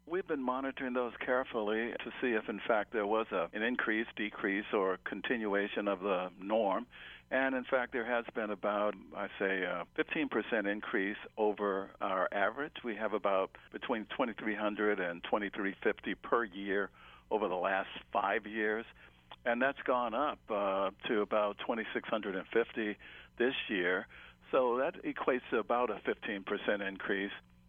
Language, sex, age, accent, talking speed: English, male, 60-79, American, 145 wpm